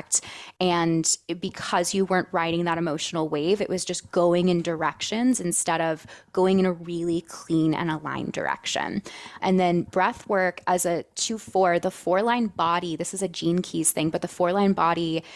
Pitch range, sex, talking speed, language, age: 165-185 Hz, female, 185 wpm, English, 20-39